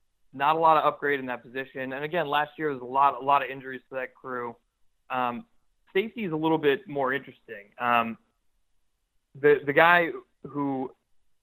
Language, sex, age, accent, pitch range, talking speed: English, male, 30-49, American, 120-145 Hz, 185 wpm